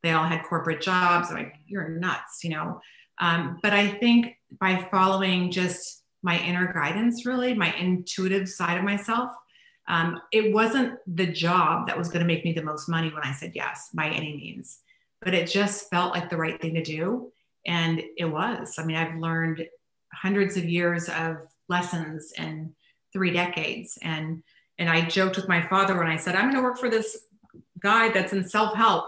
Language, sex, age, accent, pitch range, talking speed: English, female, 30-49, American, 170-210 Hz, 190 wpm